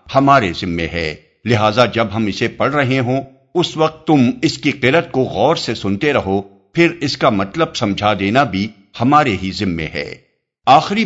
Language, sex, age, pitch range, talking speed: Urdu, male, 60-79, 100-145 Hz, 180 wpm